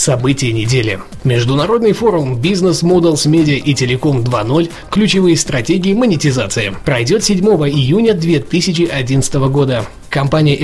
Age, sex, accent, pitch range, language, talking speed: 20-39, male, native, 135-180 Hz, Russian, 105 wpm